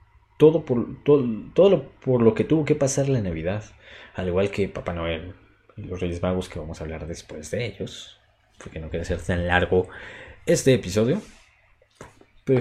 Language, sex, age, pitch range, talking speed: Spanish, male, 30-49, 95-125 Hz, 175 wpm